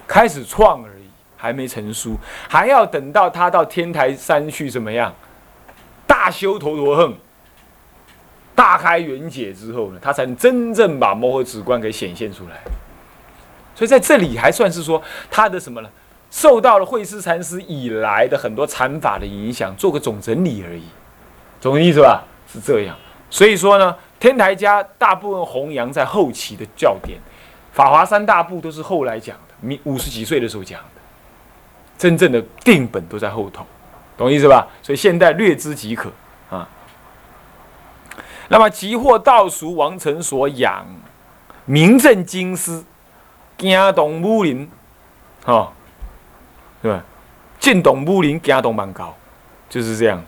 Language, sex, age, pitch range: Chinese, male, 20-39, 115-190 Hz